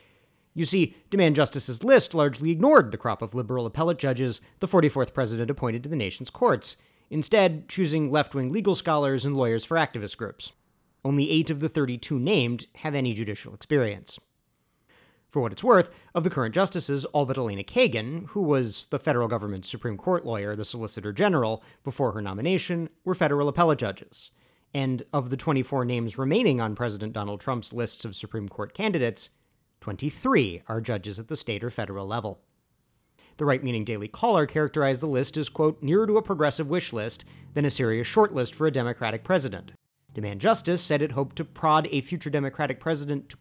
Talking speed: 180 wpm